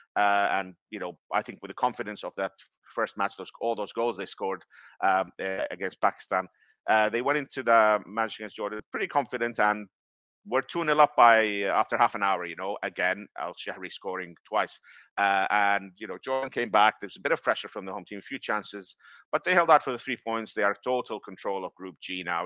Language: English